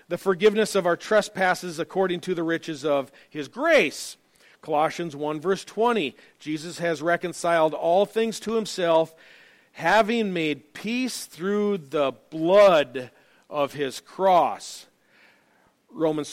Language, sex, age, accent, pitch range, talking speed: English, male, 40-59, American, 155-210 Hz, 120 wpm